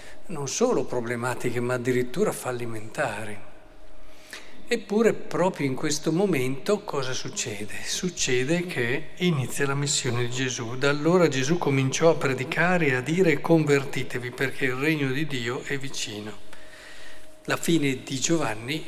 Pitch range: 125-160 Hz